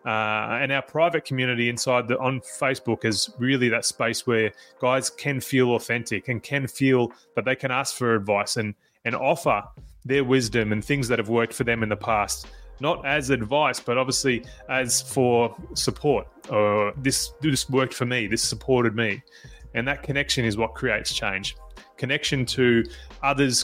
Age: 20-39